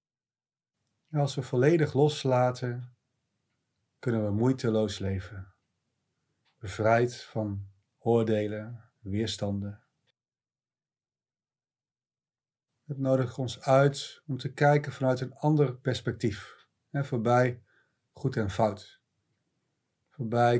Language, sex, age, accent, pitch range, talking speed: Dutch, male, 40-59, Dutch, 110-135 Hz, 80 wpm